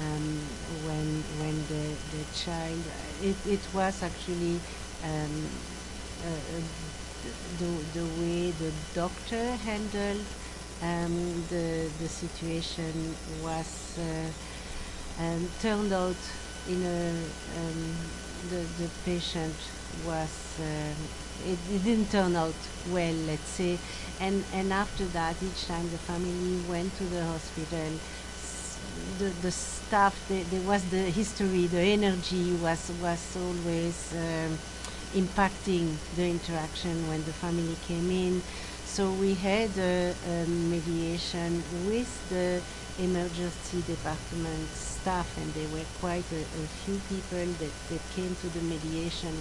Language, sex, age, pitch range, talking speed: English, female, 50-69, 160-180 Hz, 125 wpm